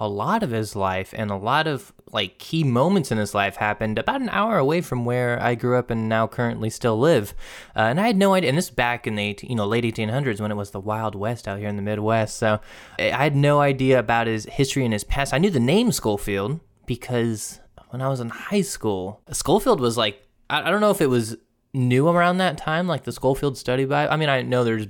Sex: male